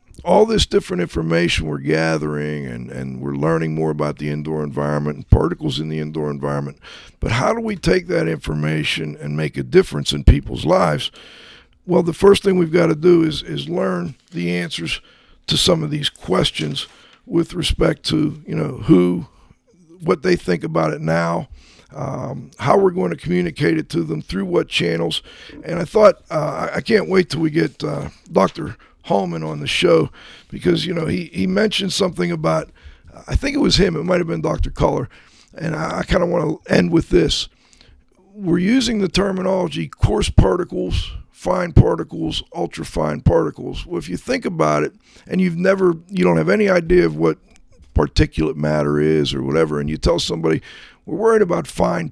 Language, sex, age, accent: English, male, 50-69, American